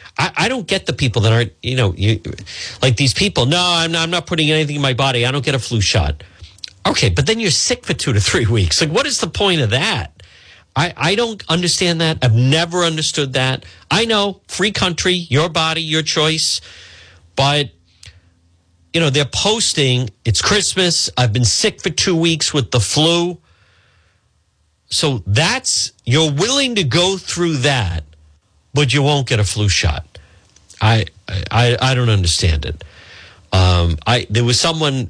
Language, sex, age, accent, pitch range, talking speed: English, male, 50-69, American, 95-155 Hz, 180 wpm